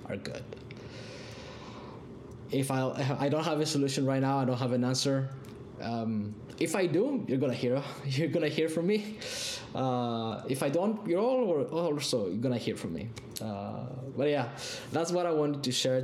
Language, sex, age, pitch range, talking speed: English, male, 20-39, 120-145 Hz, 180 wpm